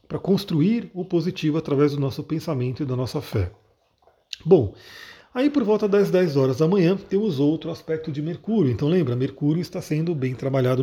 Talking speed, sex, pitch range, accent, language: 185 wpm, male, 135-180 Hz, Brazilian, Portuguese